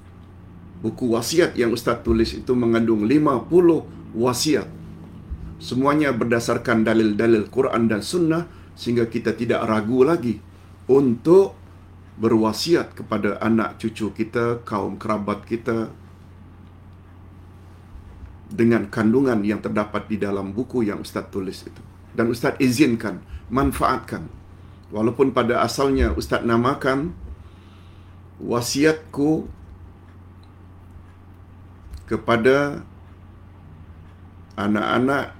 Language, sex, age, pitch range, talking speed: Malayalam, male, 50-69, 95-115 Hz, 90 wpm